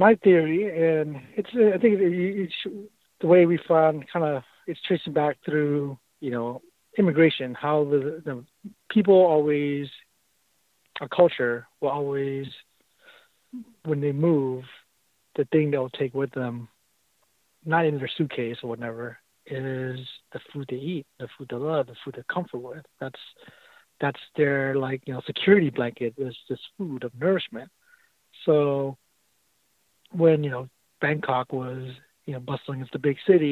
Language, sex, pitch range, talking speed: English, male, 130-170 Hz, 150 wpm